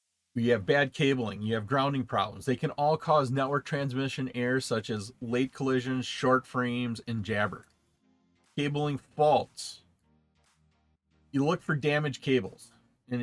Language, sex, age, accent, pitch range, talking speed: English, male, 40-59, American, 120-150 Hz, 140 wpm